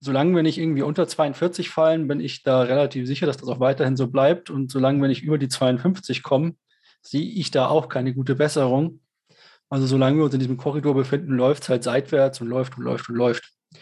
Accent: German